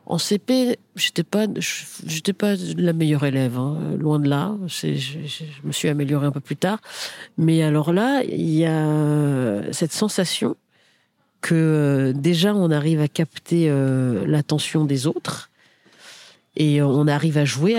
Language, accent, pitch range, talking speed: French, French, 145-190 Hz, 155 wpm